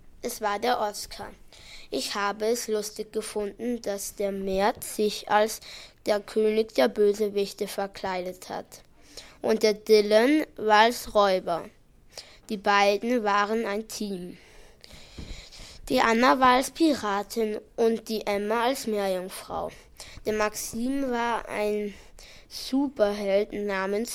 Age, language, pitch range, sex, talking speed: 20-39, German, 205-240 Hz, female, 115 wpm